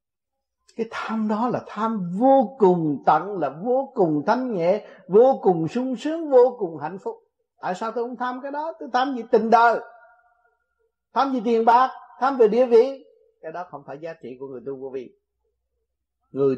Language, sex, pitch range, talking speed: Vietnamese, male, 195-275 Hz, 190 wpm